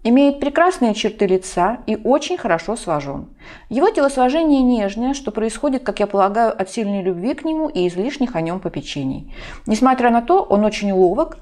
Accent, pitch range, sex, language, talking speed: native, 190-270 Hz, female, Russian, 170 wpm